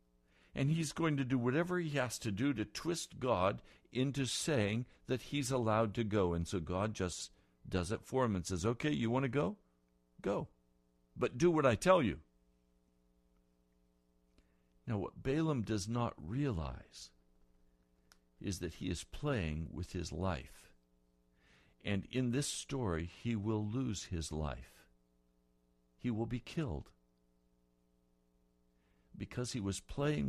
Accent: American